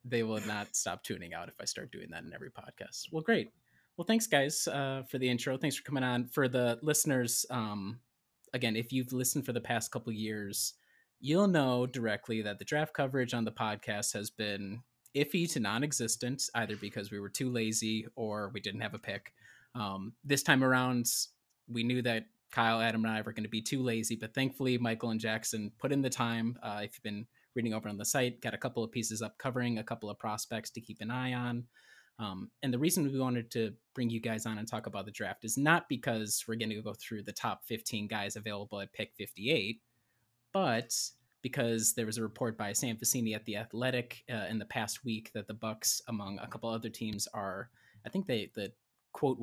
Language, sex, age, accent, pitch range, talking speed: English, male, 20-39, American, 110-125 Hz, 220 wpm